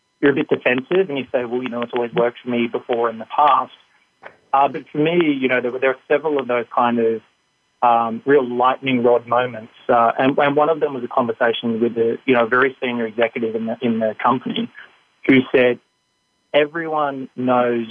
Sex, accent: male, Australian